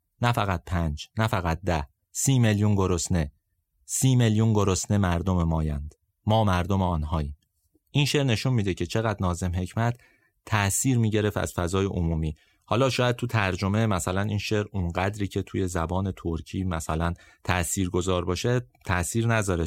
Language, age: Persian, 30-49